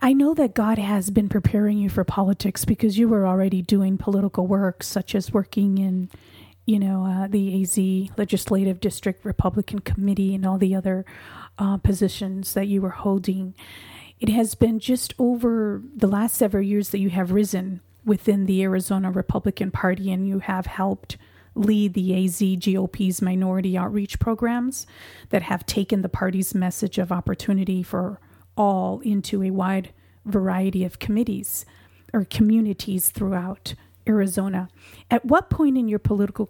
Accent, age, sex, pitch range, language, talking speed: American, 40-59, female, 190-210 Hz, English, 155 wpm